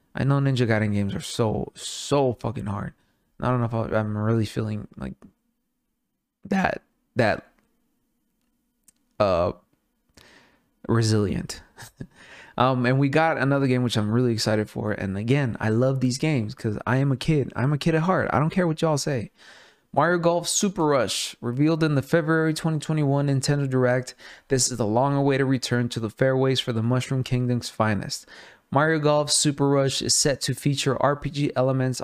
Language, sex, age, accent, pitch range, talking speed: English, male, 20-39, American, 120-150 Hz, 170 wpm